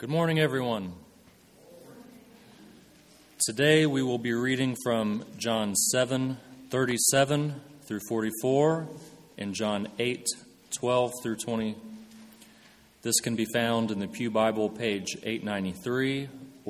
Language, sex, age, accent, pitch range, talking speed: English, male, 30-49, American, 110-140 Hz, 110 wpm